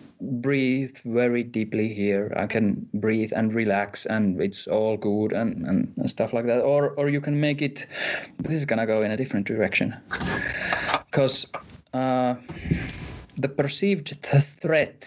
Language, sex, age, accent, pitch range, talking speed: English, male, 30-49, Finnish, 115-145 Hz, 150 wpm